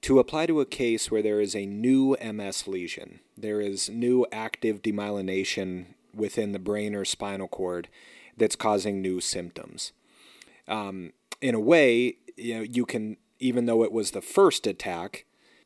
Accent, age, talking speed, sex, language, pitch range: American, 30-49, 155 wpm, male, English, 105-125 Hz